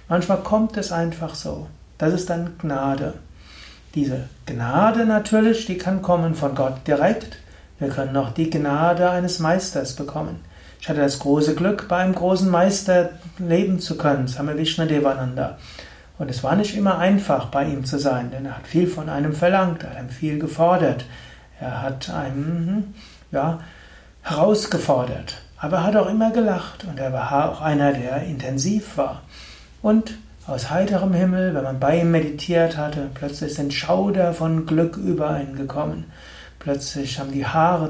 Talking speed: 160 wpm